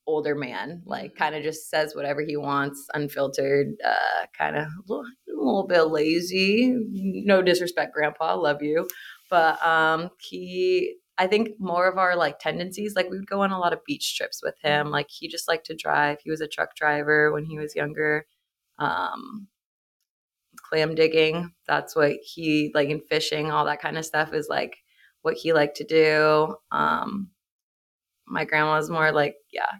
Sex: female